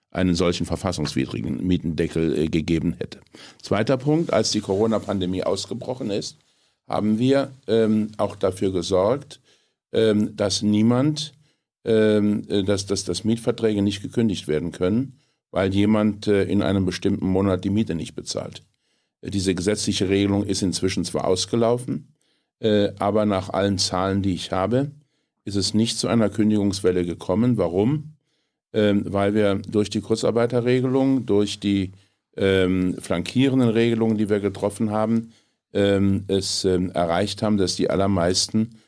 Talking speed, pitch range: 135 wpm, 90-110 Hz